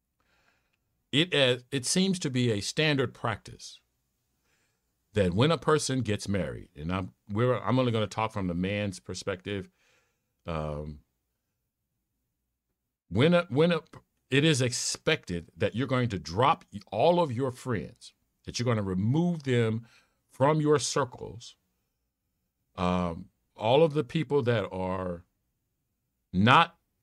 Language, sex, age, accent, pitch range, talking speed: English, male, 50-69, American, 90-125 Hz, 135 wpm